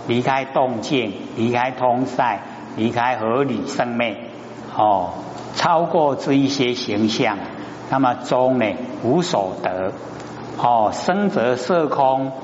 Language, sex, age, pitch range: Chinese, male, 60-79, 110-140 Hz